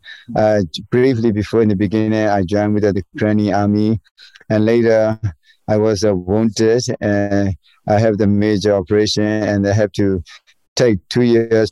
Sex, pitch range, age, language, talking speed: male, 100-110 Hz, 50-69, English, 160 wpm